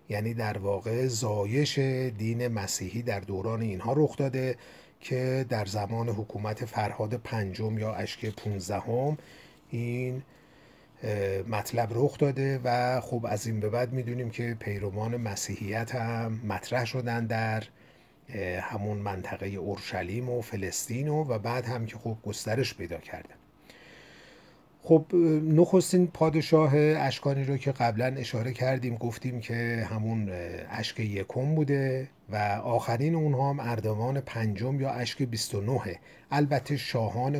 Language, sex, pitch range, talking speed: Persian, male, 105-130 Hz, 125 wpm